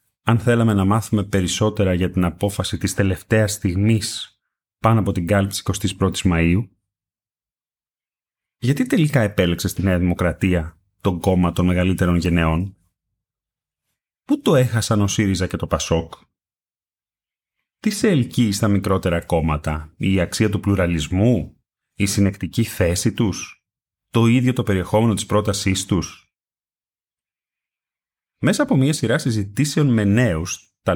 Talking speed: 125 wpm